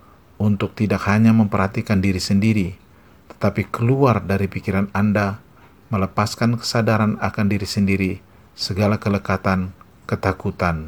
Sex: male